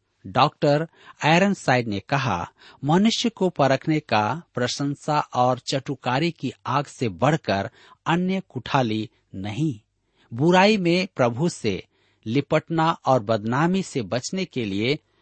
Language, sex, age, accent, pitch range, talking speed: Hindi, male, 50-69, native, 110-160 Hz, 115 wpm